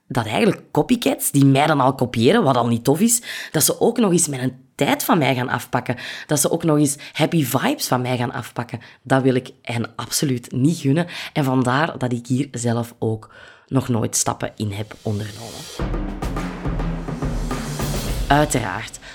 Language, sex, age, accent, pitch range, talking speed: Dutch, female, 20-39, Belgian, 125-155 Hz, 175 wpm